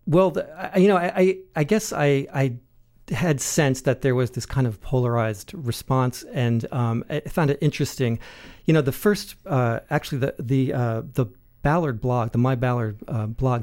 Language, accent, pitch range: English, American, 120-150 Hz